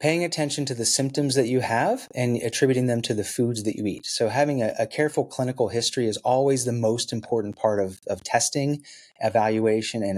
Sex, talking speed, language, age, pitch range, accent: male, 205 wpm, English, 30-49, 110-140 Hz, American